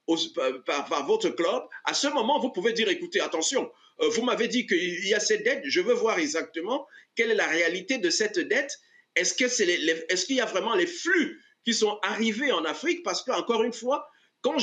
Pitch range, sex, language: 225-360 Hz, male, French